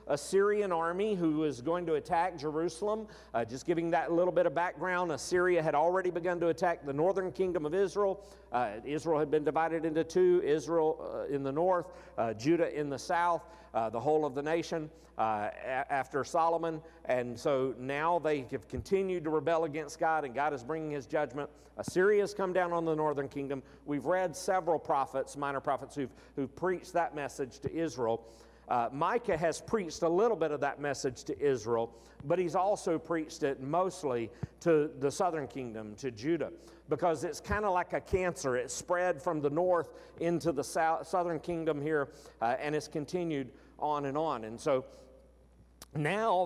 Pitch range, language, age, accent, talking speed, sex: 140-175 Hz, English, 50-69, American, 185 wpm, male